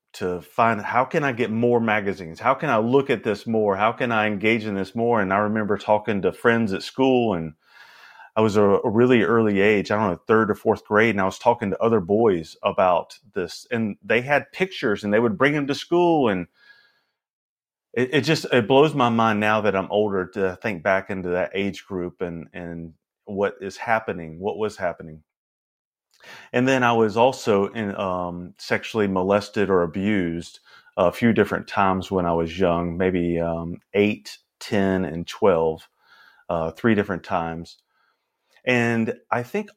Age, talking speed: 30-49, 185 wpm